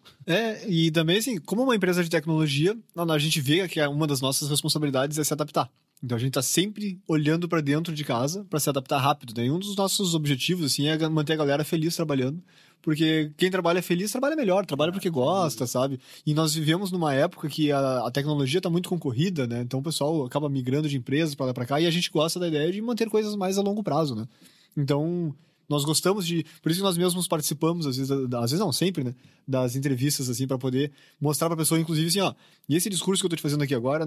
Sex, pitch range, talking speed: male, 140-180 Hz, 230 wpm